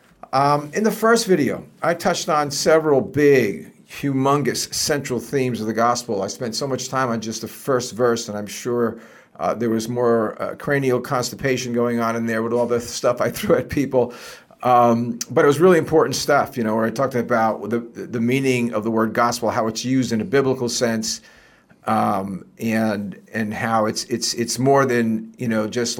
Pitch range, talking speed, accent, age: 110-135 Hz, 200 wpm, American, 40-59